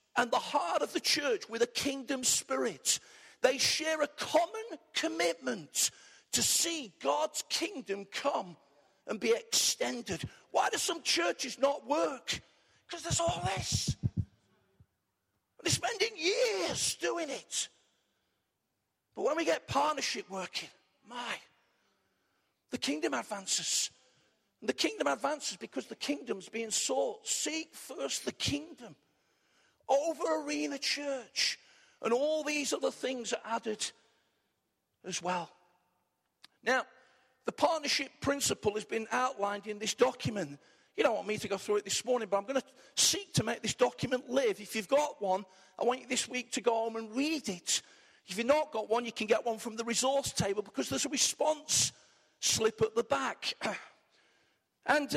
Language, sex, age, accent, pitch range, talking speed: English, male, 50-69, British, 215-300 Hz, 150 wpm